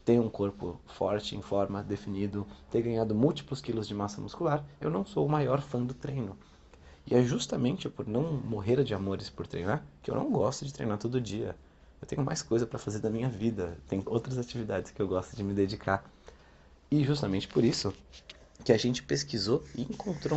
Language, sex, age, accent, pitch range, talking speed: Portuguese, male, 30-49, Brazilian, 100-135 Hz, 200 wpm